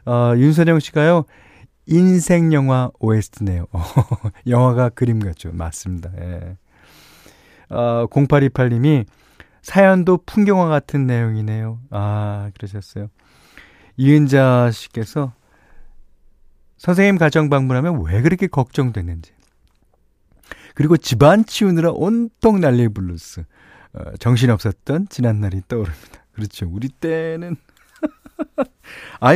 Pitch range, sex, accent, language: 95-160 Hz, male, native, Korean